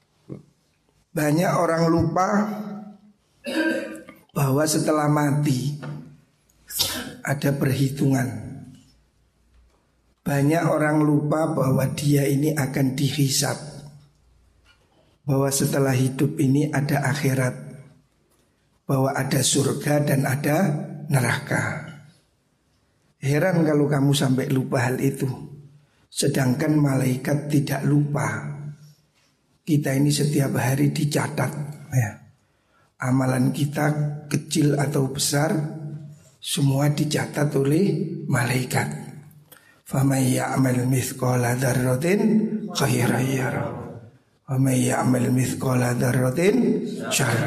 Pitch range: 135-155 Hz